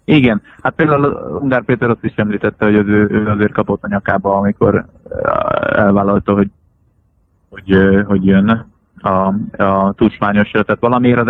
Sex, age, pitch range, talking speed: male, 20-39, 100-110 Hz, 145 wpm